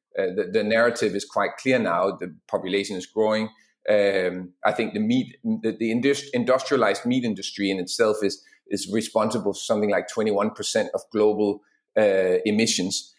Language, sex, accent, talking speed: English, male, Danish, 160 wpm